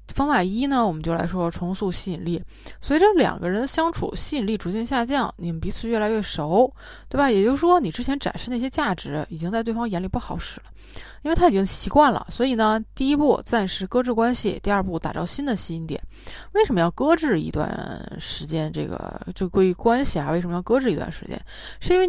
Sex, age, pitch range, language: female, 20-39, 175-250 Hz, Chinese